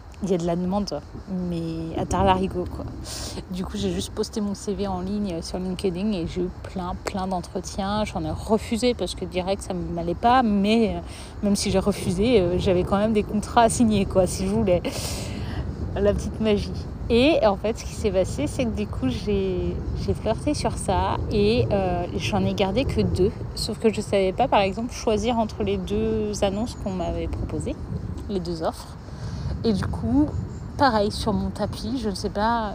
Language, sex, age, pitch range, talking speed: French, female, 30-49, 180-220 Hz, 200 wpm